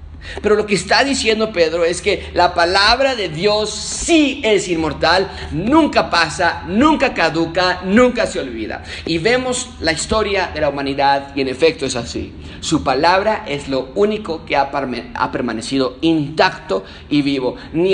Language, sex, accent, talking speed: Spanish, male, Mexican, 165 wpm